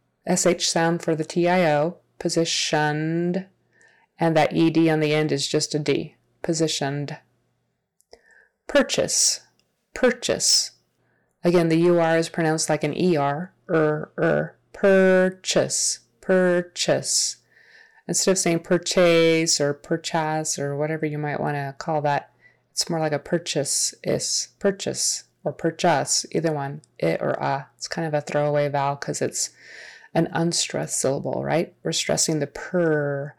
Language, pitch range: English, 155-190 Hz